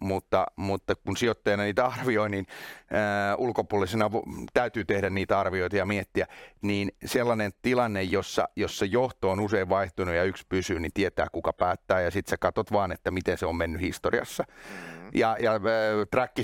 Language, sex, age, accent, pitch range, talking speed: Finnish, male, 30-49, native, 100-120 Hz, 160 wpm